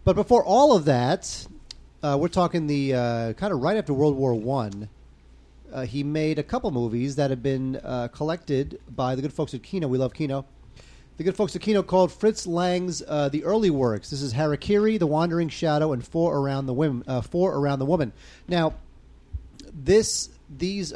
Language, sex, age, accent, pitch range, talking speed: English, male, 30-49, American, 120-155 Hz, 195 wpm